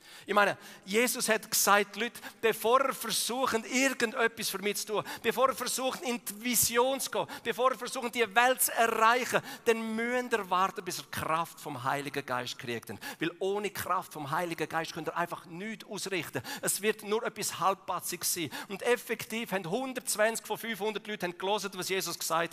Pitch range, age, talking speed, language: 190-235 Hz, 40-59, 180 wpm, German